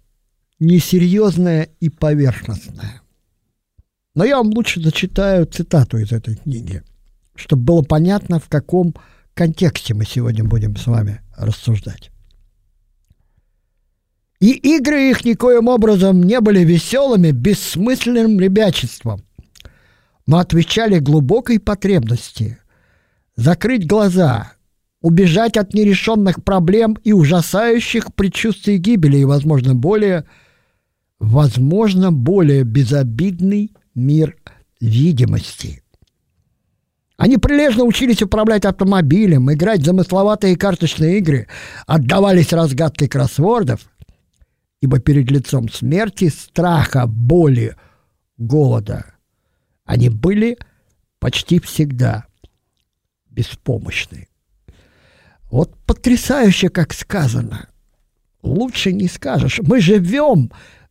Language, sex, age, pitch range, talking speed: Russian, male, 50-69, 115-195 Hz, 90 wpm